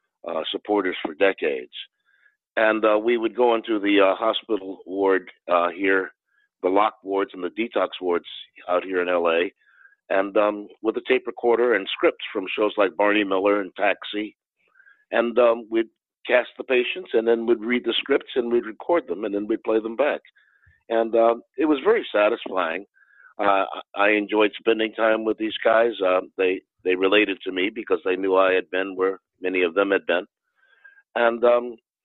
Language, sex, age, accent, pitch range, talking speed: English, male, 50-69, American, 100-120 Hz, 185 wpm